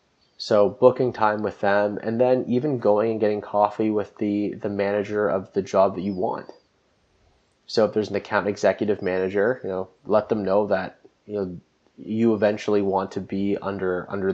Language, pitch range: English, 95-110 Hz